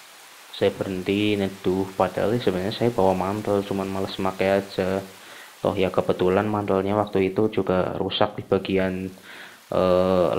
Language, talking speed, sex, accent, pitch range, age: Indonesian, 135 wpm, male, native, 95-105 Hz, 20-39